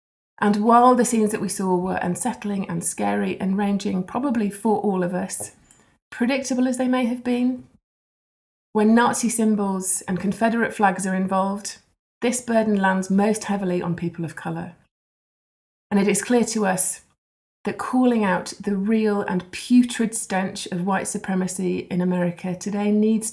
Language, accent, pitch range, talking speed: English, British, 180-220 Hz, 160 wpm